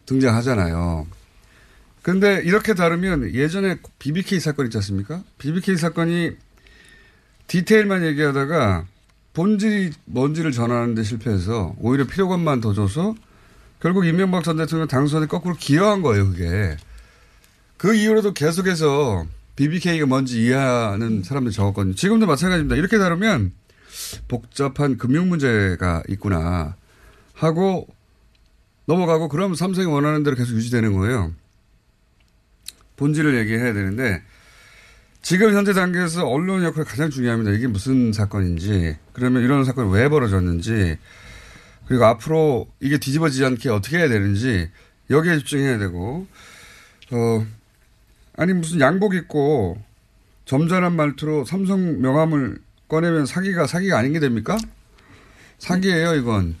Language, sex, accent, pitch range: Korean, male, native, 105-165 Hz